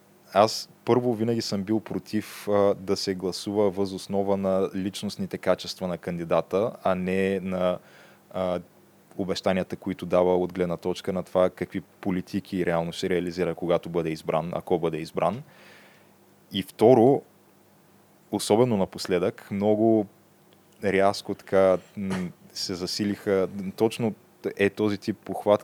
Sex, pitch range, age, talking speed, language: male, 95-105 Hz, 20-39, 125 wpm, Bulgarian